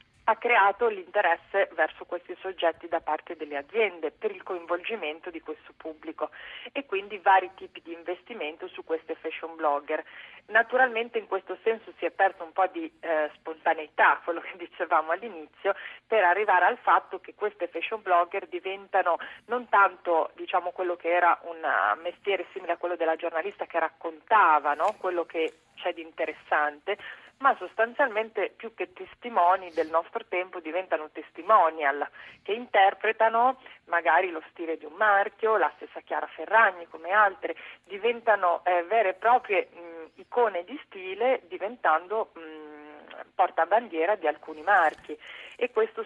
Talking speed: 145 wpm